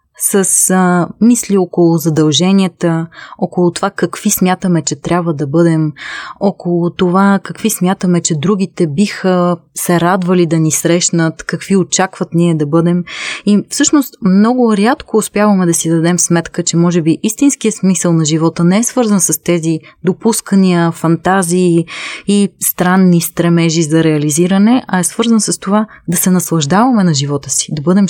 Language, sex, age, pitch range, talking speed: Bulgarian, female, 20-39, 165-205 Hz, 150 wpm